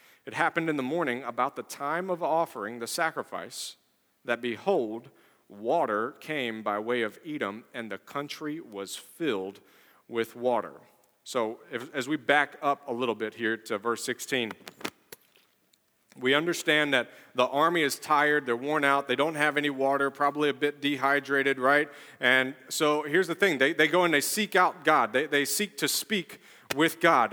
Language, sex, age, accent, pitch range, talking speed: English, male, 40-59, American, 140-195 Hz, 175 wpm